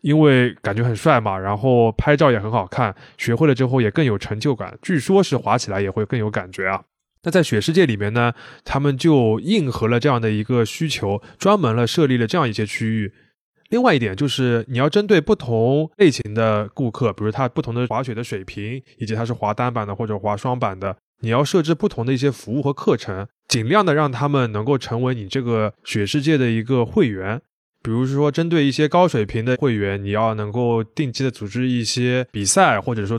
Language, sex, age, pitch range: Chinese, male, 20-39, 110-145 Hz